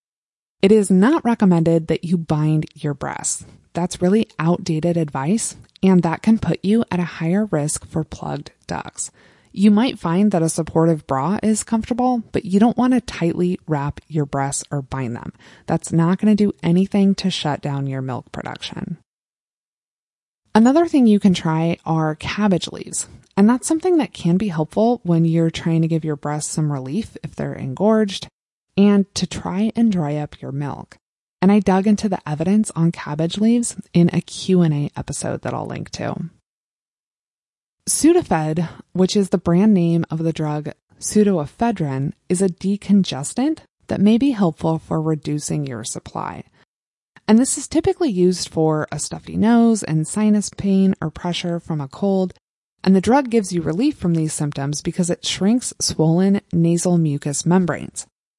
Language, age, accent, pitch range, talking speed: English, 20-39, American, 160-210 Hz, 170 wpm